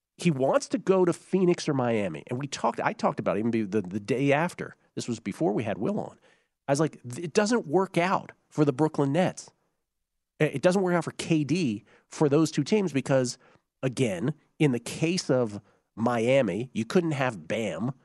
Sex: male